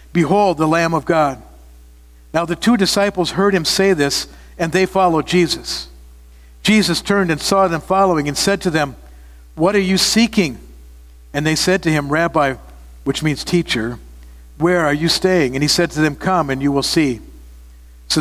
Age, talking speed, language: 60-79, 180 wpm, English